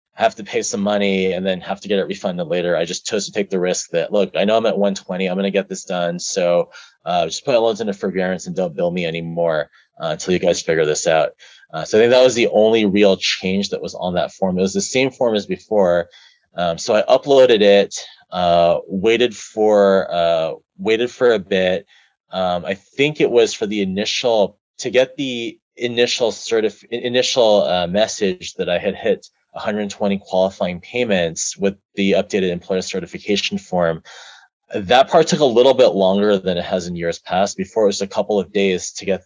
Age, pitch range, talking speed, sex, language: 30-49, 90-115 Hz, 210 wpm, male, English